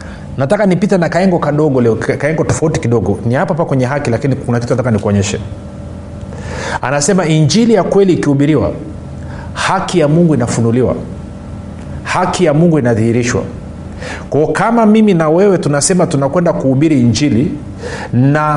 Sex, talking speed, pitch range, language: male, 140 wpm, 100-160 Hz, Swahili